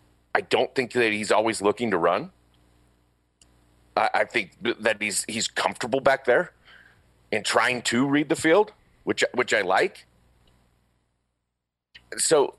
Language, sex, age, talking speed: English, male, 40-59, 140 wpm